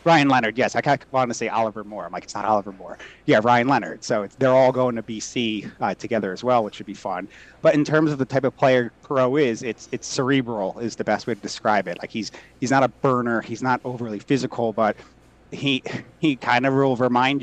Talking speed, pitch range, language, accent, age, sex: 240 wpm, 110-130 Hz, English, American, 30-49, male